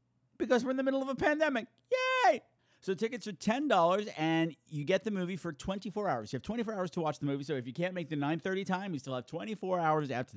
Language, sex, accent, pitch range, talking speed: English, male, American, 130-185 Hz, 280 wpm